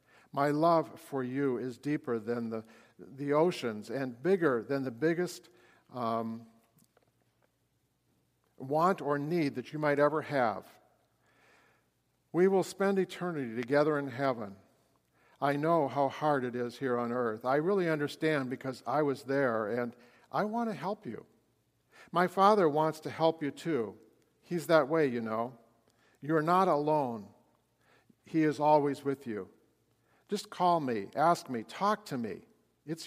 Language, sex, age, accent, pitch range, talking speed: English, male, 50-69, American, 125-165 Hz, 150 wpm